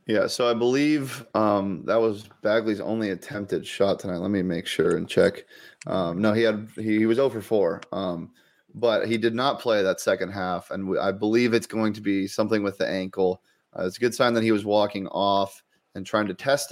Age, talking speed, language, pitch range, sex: 20-39, 220 wpm, English, 100-115 Hz, male